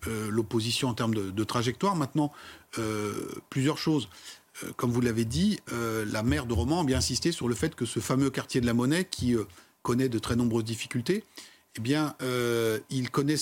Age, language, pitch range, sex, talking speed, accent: 40-59, French, 115-145 Hz, male, 210 wpm, French